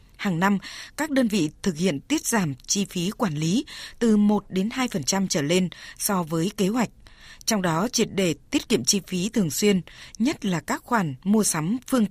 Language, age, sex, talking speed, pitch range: Vietnamese, 20-39, female, 190 wpm, 175-225 Hz